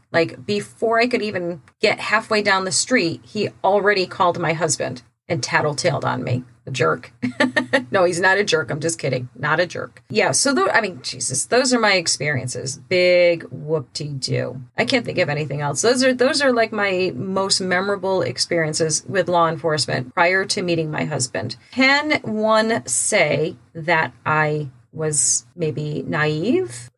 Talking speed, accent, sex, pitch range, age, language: 160 wpm, American, female, 145-210 Hz, 30-49, English